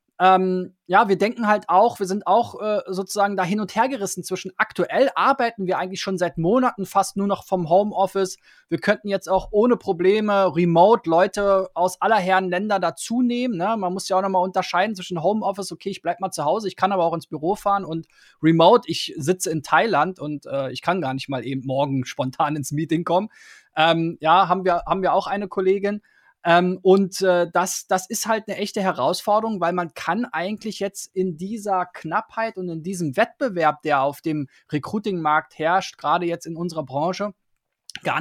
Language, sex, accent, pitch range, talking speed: German, male, German, 165-195 Hz, 195 wpm